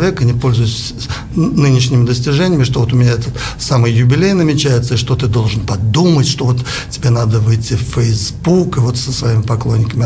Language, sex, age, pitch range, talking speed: Russian, male, 60-79, 125-150 Hz, 180 wpm